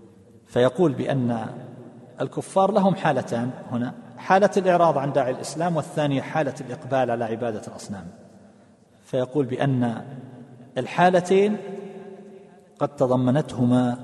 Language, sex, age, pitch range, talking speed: Arabic, male, 40-59, 120-155 Hz, 95 wpm